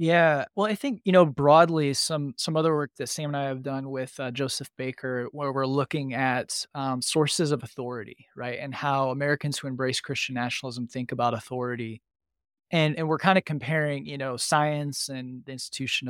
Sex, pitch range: male, 125-145 Hz